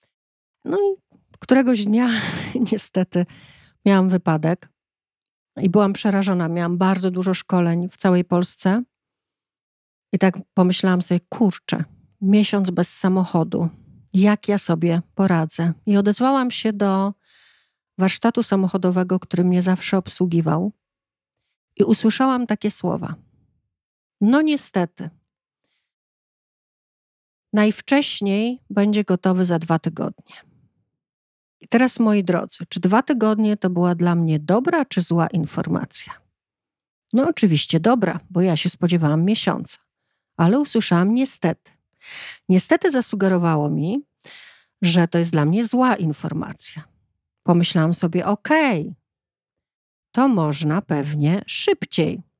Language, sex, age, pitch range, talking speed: Polish, female, 40-59, 175-225 Hz, 110 wpm